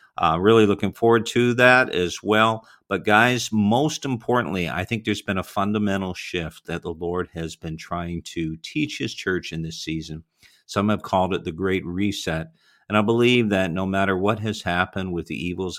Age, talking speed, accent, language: 50-69, 195 wpm, American, English